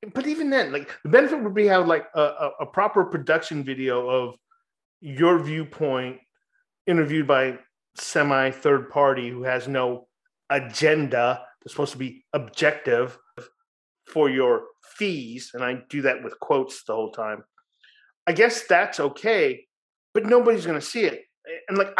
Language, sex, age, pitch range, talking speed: English, male, 30-49, 130-180 Hz, 150 wpm